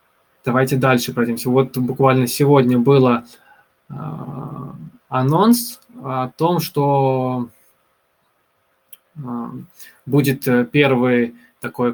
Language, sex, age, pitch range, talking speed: Russian, male, 20-39, 120-140 Hz, 70 wpm